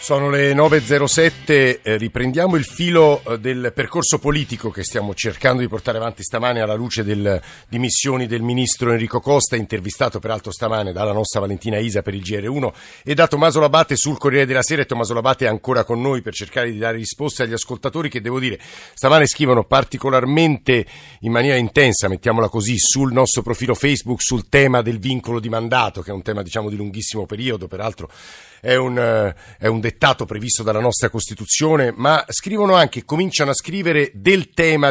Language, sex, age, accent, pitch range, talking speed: Italian, male, 50-69, native, 110-135 Hz, 175 wpm